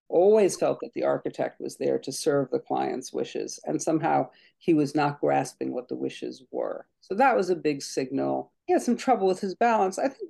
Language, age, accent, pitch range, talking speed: English, 60-79, American, 165-240 Hz, 215 wpm